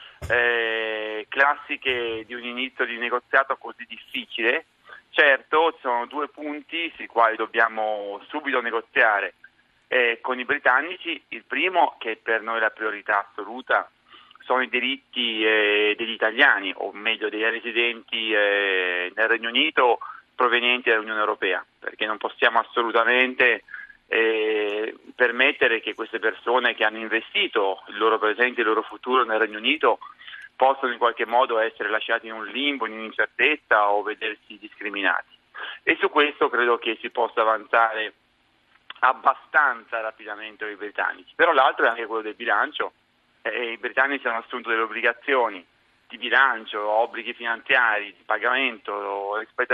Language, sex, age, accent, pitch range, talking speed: Italian, male, 30-49, native, 110-130 Hz, 140 wpm